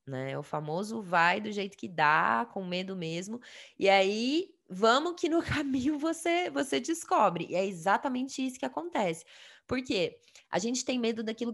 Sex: female